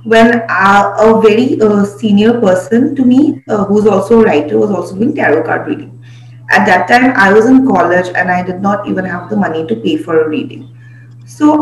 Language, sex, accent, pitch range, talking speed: English, female, Indian, 160-230 Hz, 205 wpm